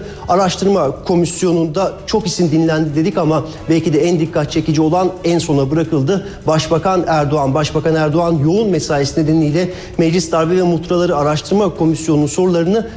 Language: Turkish